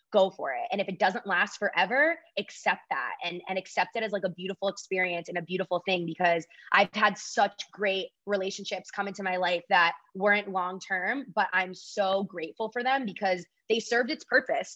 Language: English